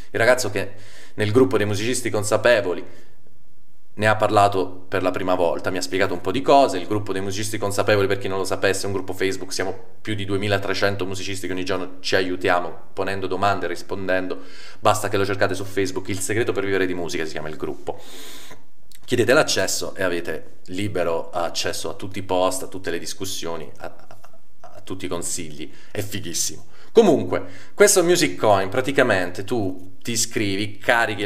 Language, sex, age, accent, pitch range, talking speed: Italian, male, 30-49, native, 95-115 Hz, 185 wpm